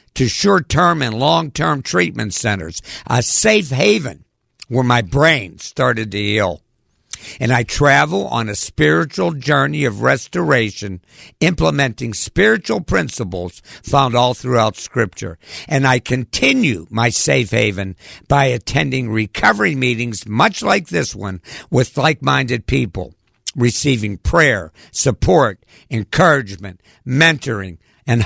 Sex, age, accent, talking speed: male, 60-79, American, 115 wpm